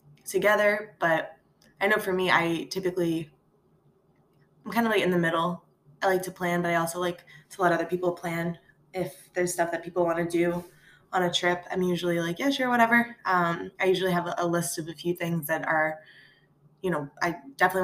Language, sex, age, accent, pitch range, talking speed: English, female, 20-39, American, 170-190 Hz, 205 wpm